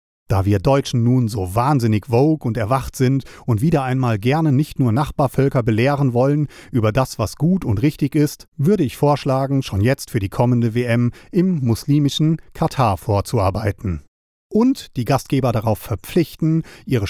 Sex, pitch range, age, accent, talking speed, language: male, 115-145 Hz, 40-59, German, 160 wpm, German